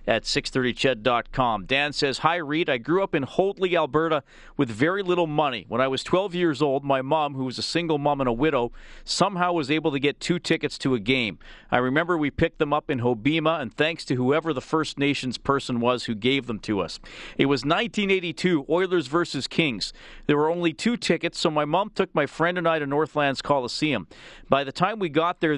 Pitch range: 135-170 Hz